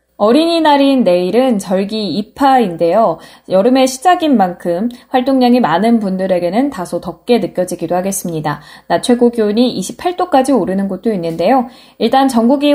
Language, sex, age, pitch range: Korean, female, 20-39, 180-265 Hz